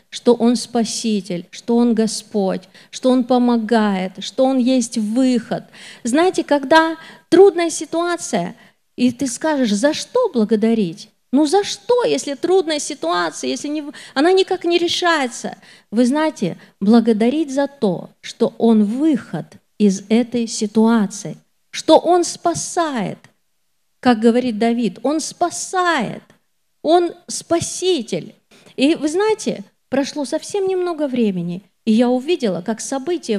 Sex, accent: female, native